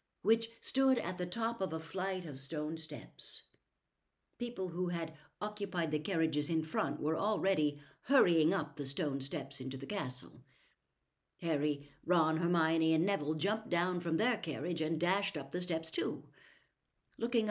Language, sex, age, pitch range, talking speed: English, female, 60-79, 155-215 Hz, 160 wpm